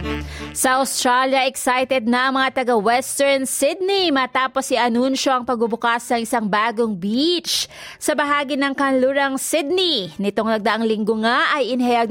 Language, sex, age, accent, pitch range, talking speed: Filipino, female, 30-49, native, 230-280 Hz, 140 wpm